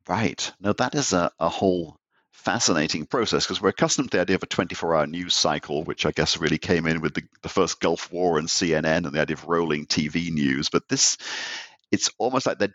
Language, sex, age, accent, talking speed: English, male, 50-69, British, 220 wpm